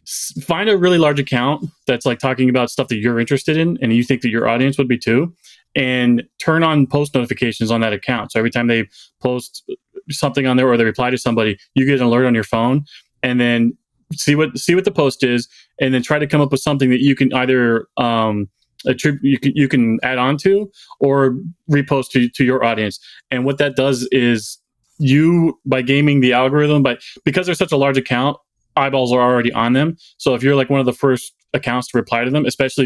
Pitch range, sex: 120-145 Hz, male